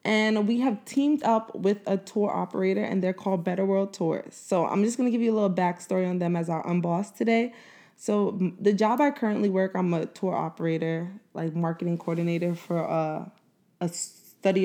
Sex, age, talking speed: female, 20-39, 195 wpm